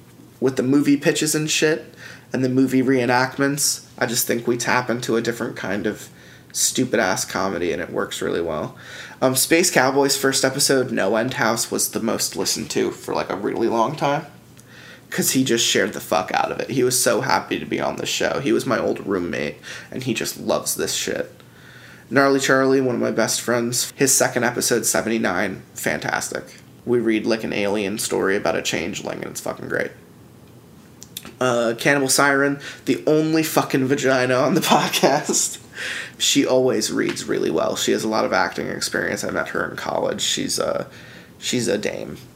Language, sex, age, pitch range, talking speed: English, male, 20-39, 115-140 Hz, 185 wpm